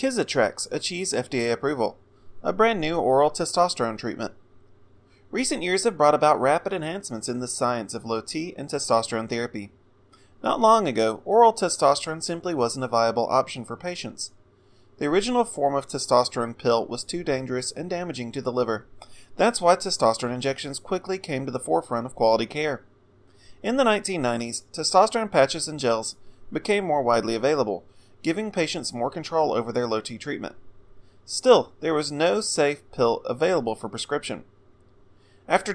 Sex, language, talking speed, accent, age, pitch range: male, English, 155 wpm, American, 30-49, 115-160 Hz